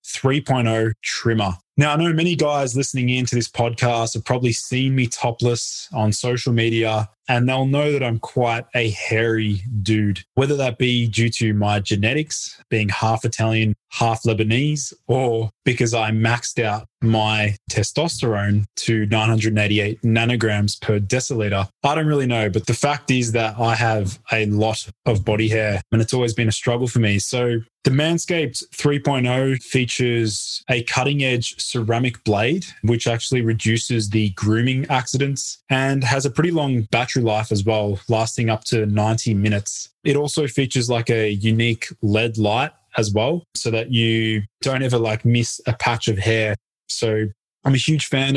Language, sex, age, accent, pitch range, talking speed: English, male, 20-39, Australian, 110-130 Hz, 165 wpm